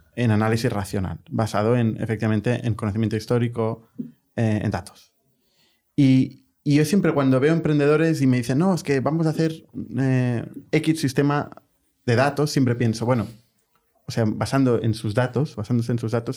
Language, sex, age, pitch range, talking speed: Spanish, male, 30-49, 115-145 Hz, 170 wpm